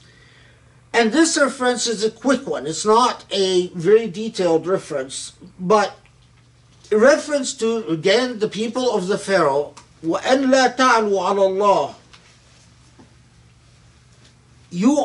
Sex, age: male, 50-69